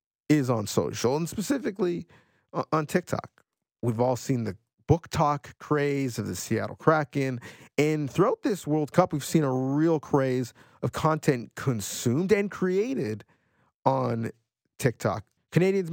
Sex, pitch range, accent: male, 125-160 Hz, American